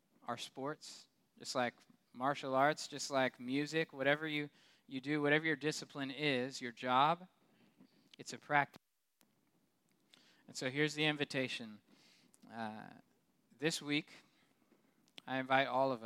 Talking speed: 125 wpm